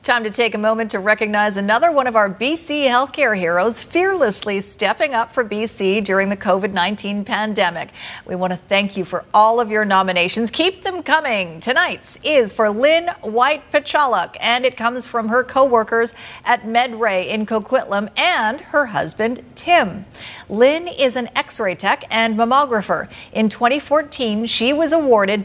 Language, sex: English, female